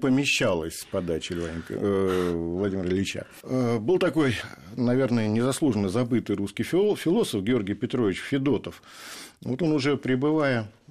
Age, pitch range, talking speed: 50-69, 100-130 Hz, 110 wpm